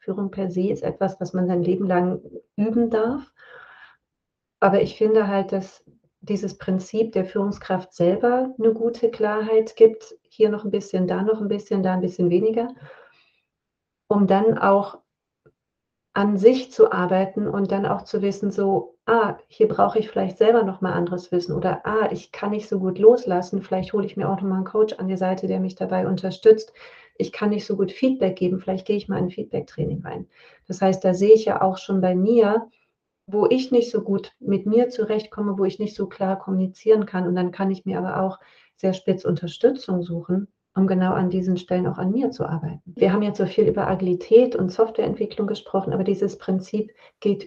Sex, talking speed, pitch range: female, 200 wpm, 185-220 Hz